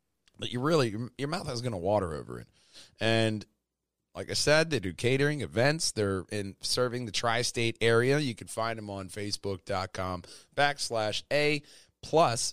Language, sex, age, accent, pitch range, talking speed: English, male, 30-49, American, 100-125 Hz, 165 wpm